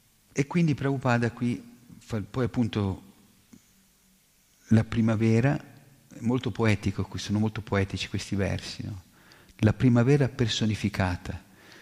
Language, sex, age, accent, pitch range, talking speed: Italian, male, 50-69, native, 100-120 Hz, 105 wpm